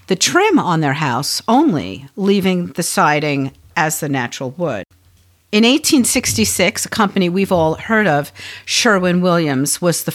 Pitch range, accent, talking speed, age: 145-195 Hz, American, 140 wpm, 50-69